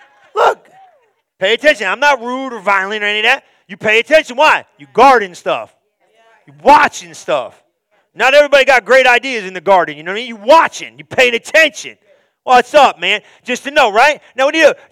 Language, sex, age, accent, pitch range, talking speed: English, male, 40-59, American, 180-270 Hz, 205 wpm